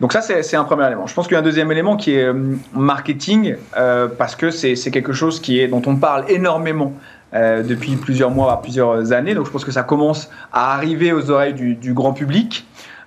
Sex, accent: male, French